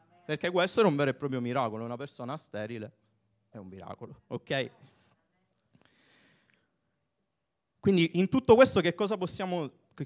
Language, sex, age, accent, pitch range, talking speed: Italian, male, 30-49, native, 120-175 Hz, 120 wpm